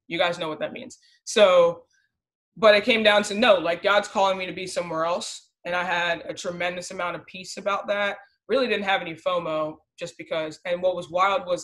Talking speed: 220 wpm